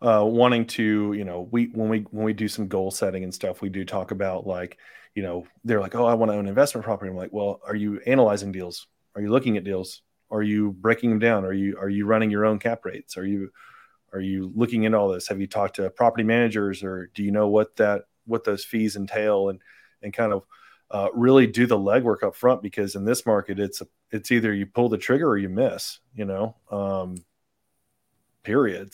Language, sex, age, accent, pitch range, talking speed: English, male, 30-49, American, 100-120 Hz, 235 wpm